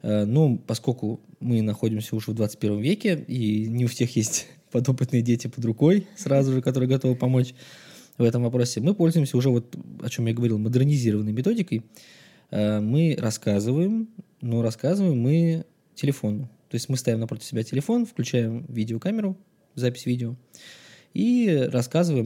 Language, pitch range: Russian, 115-150 Hz